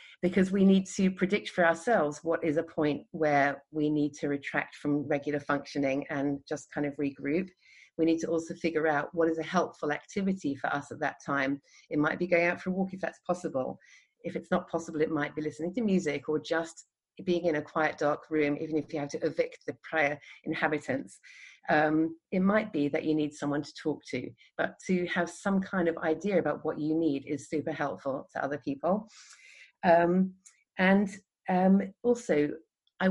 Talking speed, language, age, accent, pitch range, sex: 200 wpm, English, 40-59, British, 150-180 Hz, female